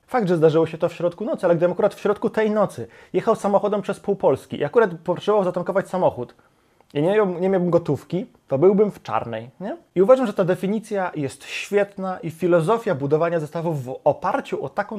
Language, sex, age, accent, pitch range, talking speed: Polish, male, 20-39, native, 150-205 Hz, 205 wpm